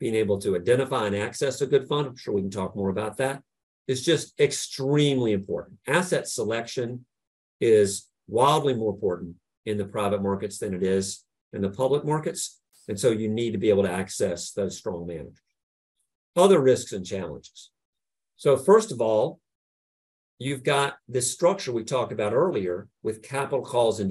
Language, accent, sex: English, American, male